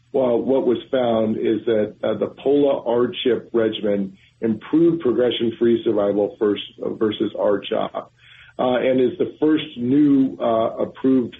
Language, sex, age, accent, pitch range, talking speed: English, male, 50-69, American, 115-135 Hz, 135 wpm